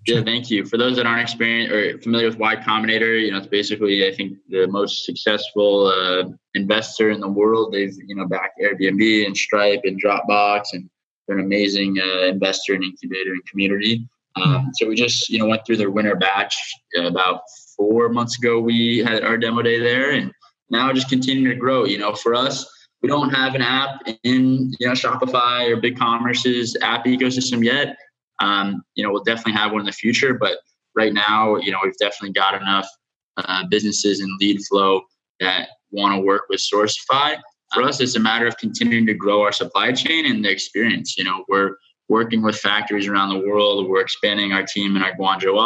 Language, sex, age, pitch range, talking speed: English, male, 20-39, 100-115 Hz, 200 wpm